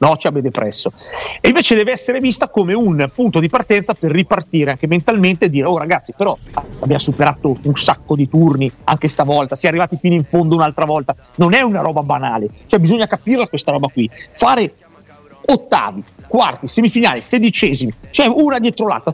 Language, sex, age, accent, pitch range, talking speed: Italian, male, 40-59, native, 150-215 Hz, 190 wpm